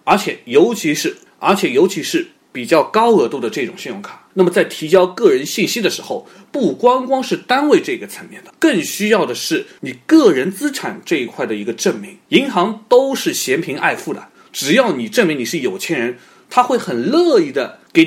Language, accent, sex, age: Chinese, native, male, 30-49